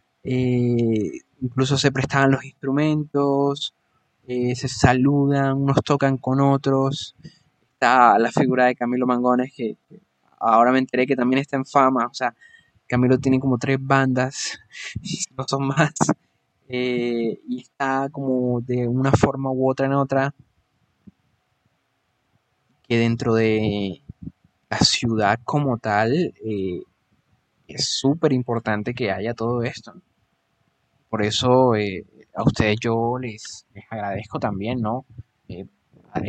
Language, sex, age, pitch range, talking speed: Spanish, male, 20-39, 115-135 Hz, 130 wpm